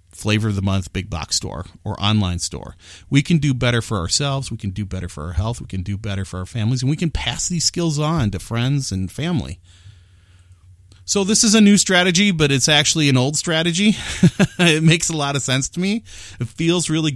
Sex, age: male, 30-49